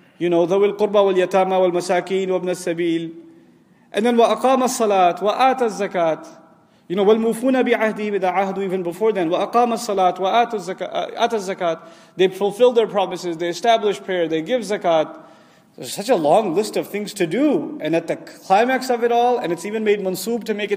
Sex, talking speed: male, 210 wpm